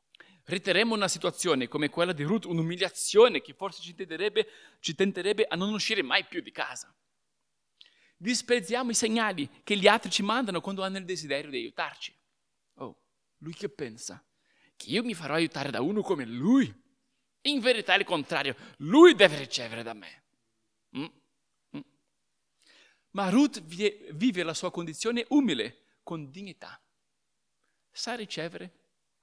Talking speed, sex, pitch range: 145 wpm, male, 175-255 Hz